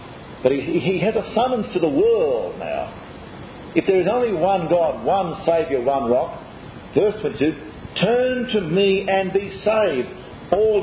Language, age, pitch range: English, 50-69, 140-215 Hz